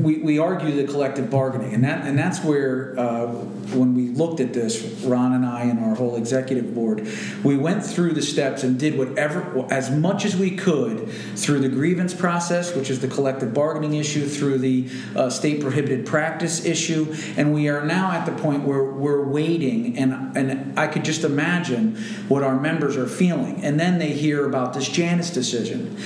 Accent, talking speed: American, 195 wpm